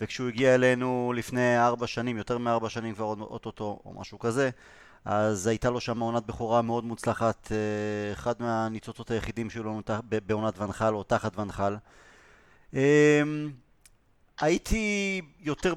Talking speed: 130 wpm